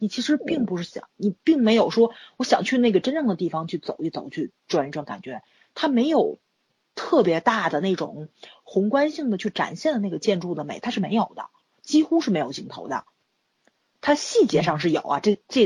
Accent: native